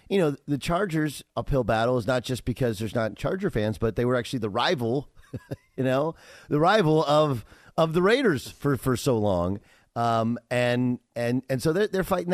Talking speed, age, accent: 195 wpm, 40-59, American